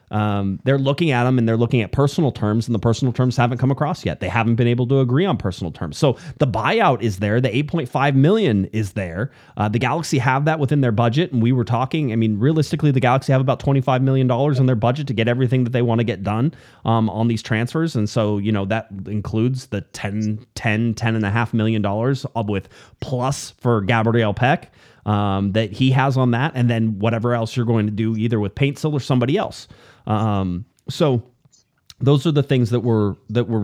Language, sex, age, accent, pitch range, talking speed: English, male, 30-49, American, 110-140 Hz, 225 wpm